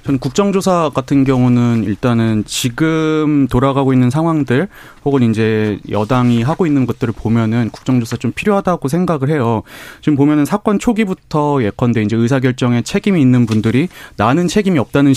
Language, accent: Korean, native